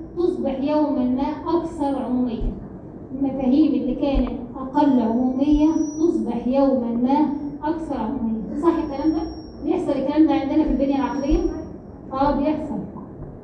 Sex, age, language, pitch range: female, 20-39, Arabic, 275-315 Hz